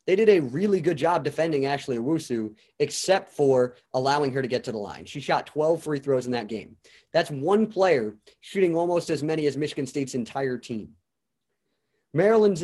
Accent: American